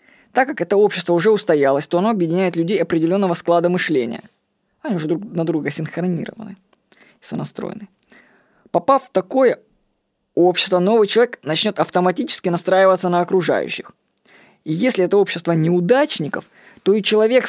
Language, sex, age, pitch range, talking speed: Russian, female, 20-39, 170-215 Hz, 135 wpm